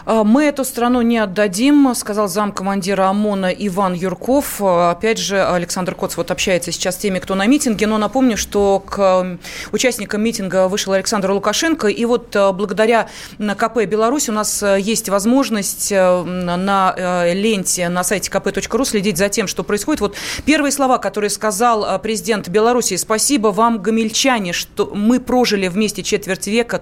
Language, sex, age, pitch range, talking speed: Russian, female, 30-49, 190-225 Hz, 150 wpm